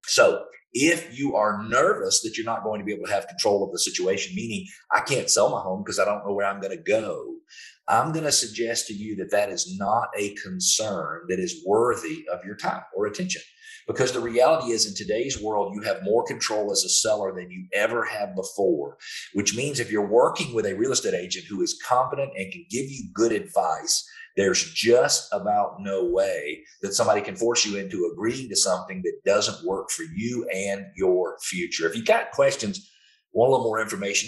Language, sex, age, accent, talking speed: English, male, 40-59, American, 215 wpm